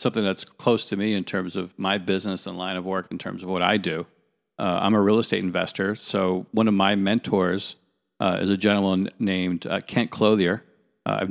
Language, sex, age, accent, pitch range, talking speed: English, male, 50-69, American, 95-110 Hz, 220 wpm